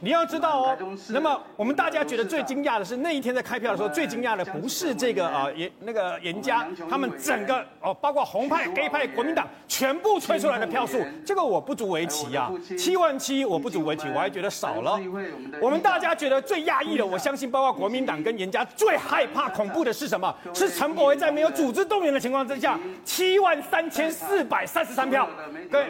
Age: 40-59